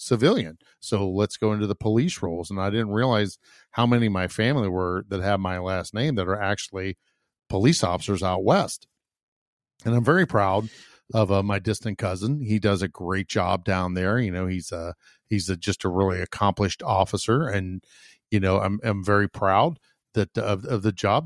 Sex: male